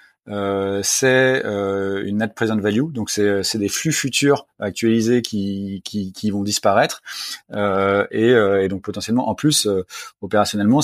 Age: 30-49